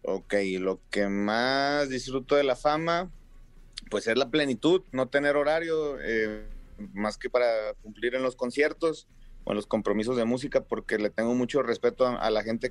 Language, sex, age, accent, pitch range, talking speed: Spanish, male, 30-49, Mexican, 115-135 Hz, 175 wpm